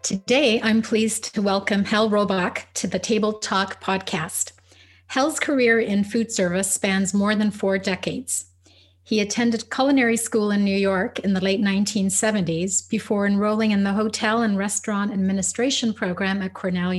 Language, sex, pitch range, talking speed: English, female, 180-220 Hz, 155 wpm